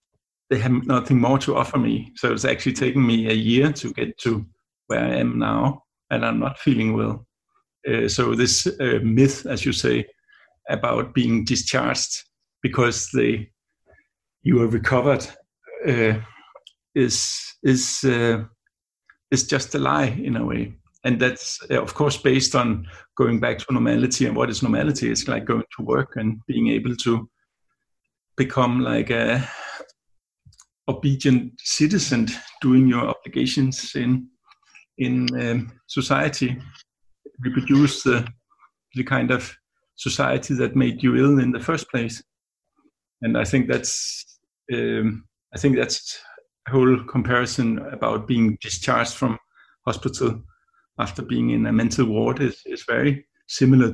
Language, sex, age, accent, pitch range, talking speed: Danish, male, 60-79, native, 115-135 Hz, 140 wpm